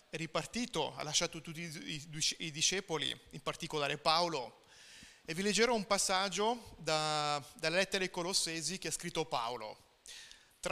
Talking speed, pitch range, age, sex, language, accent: 140 wpm, 155-175 Hz, 30-49, male, Italian, native